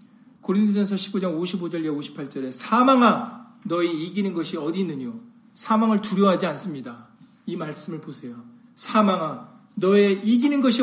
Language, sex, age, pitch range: Korean, male, 40-59, 180-235 Hz